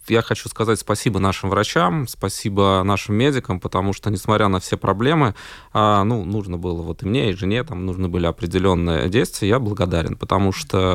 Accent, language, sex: native, Russian, male